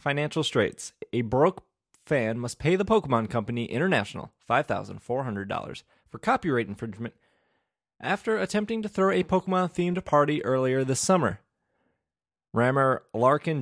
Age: 20-39